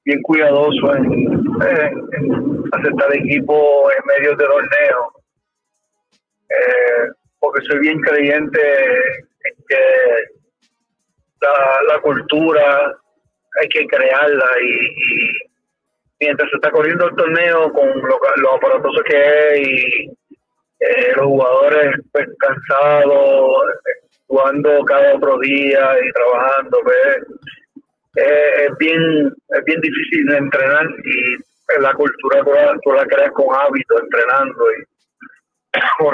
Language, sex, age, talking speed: Spanish, male, 30-49, 120 wpm